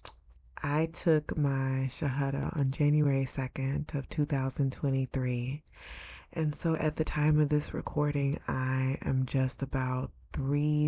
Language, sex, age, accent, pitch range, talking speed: English, female, 20-39, American, 130-145 Hz, 120 wpm